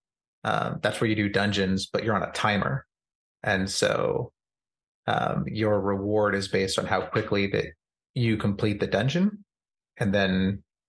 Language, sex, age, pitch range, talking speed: English, male, 30-49, 100-120 Hz, 155 wpm